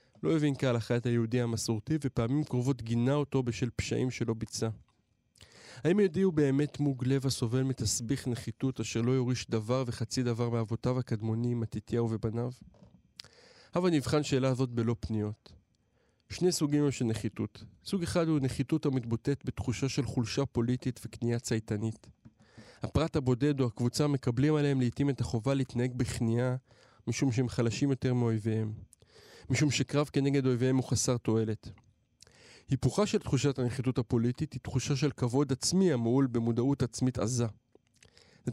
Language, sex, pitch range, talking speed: Hebrew, male, 115-140 Hz, 145 wpm